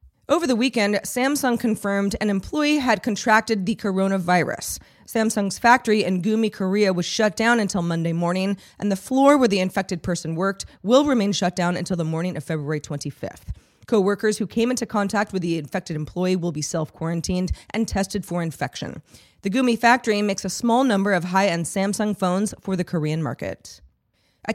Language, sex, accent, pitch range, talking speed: English, female, American, 170-215 Hz, 175 wpm